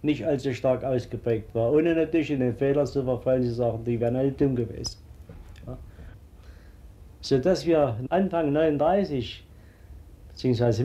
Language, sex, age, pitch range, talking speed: German, male, 60-79, 115-150 Hz, 140 wpm